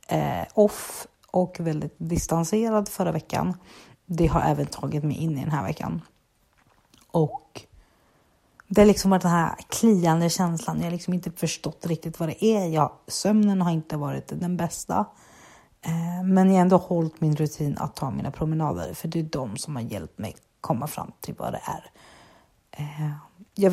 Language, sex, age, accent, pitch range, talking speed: Swedish, female, 30-49, native, 150-180 Hz, 170 wpm